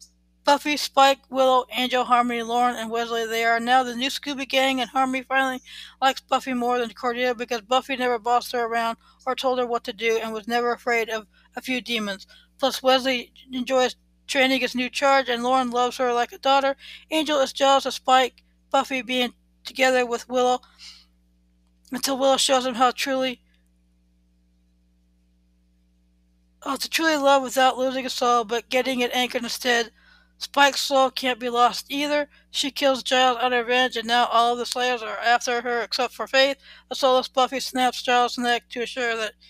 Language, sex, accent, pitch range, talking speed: English, female, American, 210-260 Hz, 180 wpm